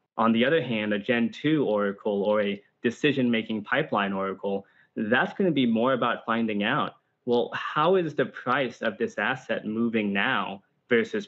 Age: 20-39